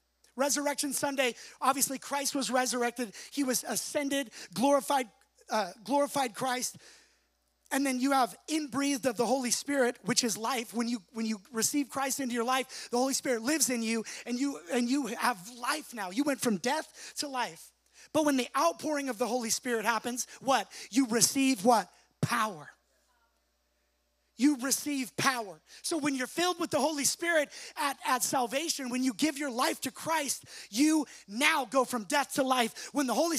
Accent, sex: American, male